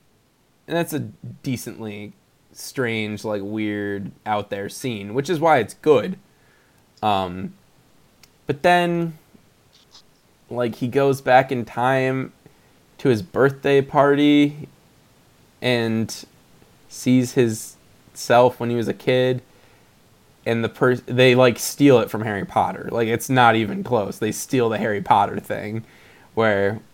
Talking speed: 130 wpm